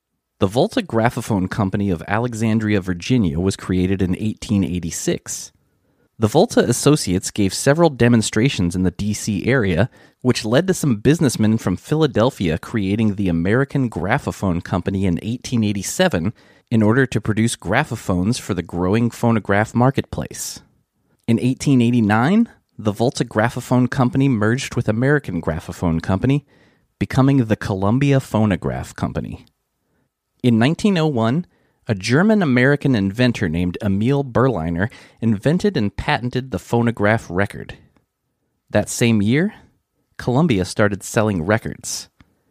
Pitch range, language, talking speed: 100-130 Hz, English, 115 wpm